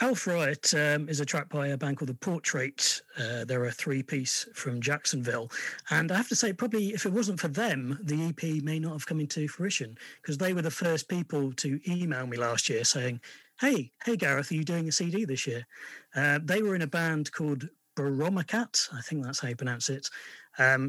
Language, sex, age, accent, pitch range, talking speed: English, male, 40-59, British, 130-165 Hz, 215 wpm